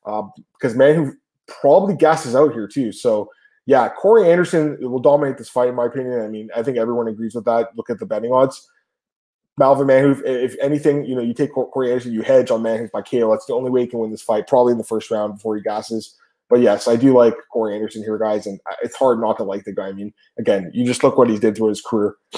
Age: 20-39